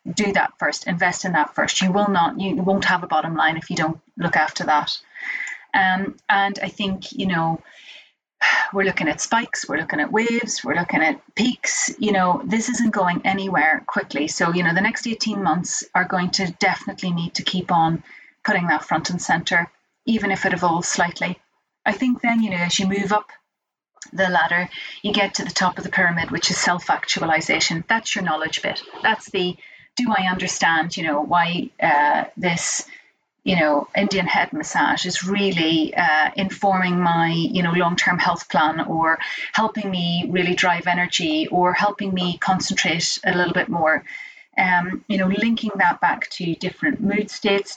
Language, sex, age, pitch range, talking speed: English, female, 30-49, 175-210 Hz, 185 wpm